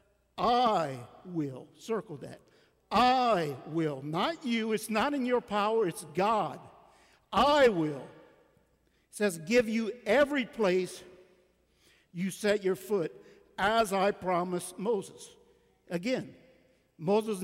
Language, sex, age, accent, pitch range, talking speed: English, male, 50-69, American, 175-220 Hz, 115 wpm